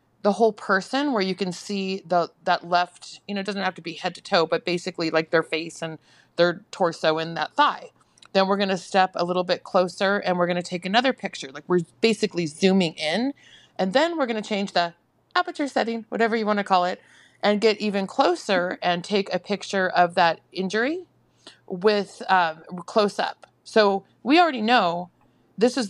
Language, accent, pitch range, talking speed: English, American, 175-215 Hz, 205 wpm